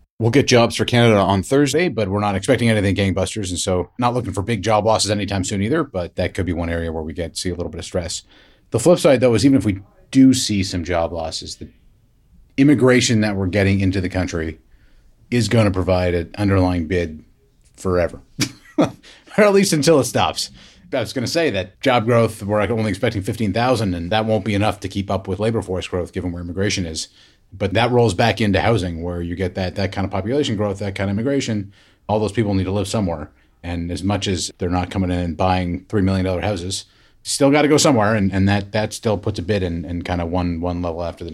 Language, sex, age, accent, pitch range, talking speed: English, male, 30-49, American, 90-115 Hz, 240 wpm